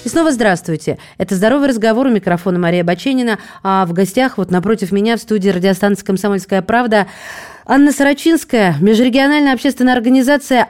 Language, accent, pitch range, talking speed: Russian, native, 195-245 Hz, 145 wpm